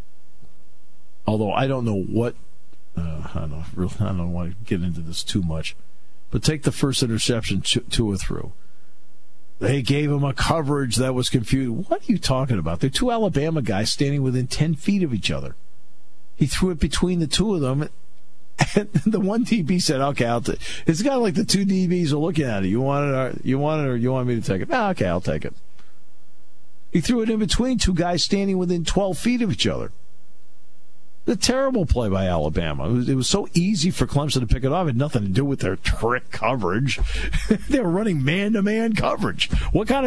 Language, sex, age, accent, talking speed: English, male, 50-69, American, 220 wpm